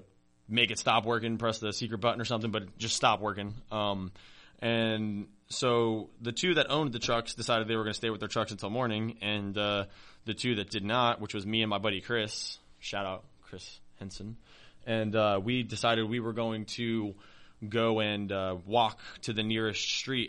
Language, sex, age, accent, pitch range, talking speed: English, male, 20-39, American, 100-115 Hz, 200 wpm